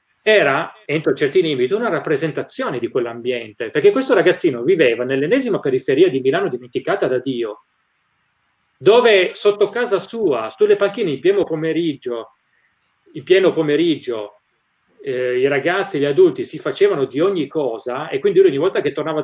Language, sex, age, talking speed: Italian, male, 30-49, 150 wpm